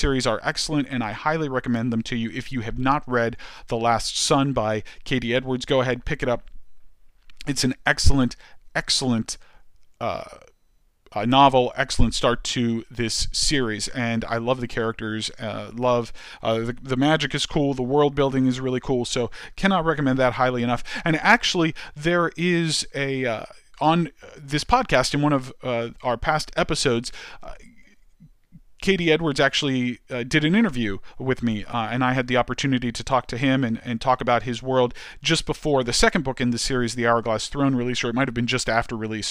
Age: 40-59